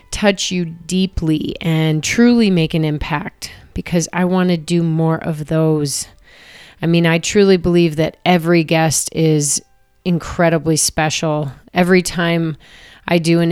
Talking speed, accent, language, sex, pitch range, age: 140 wpm, American, English, female, 160-185 Hz, 30-49